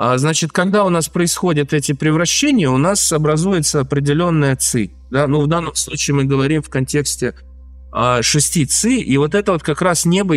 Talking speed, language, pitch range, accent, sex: 170 wpm, Russian, 125-165 Hz, native, male